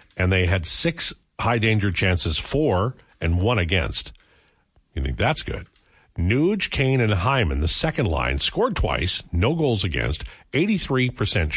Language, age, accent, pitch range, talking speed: English, 50-69, American, 85-115 Hz, 140 wpm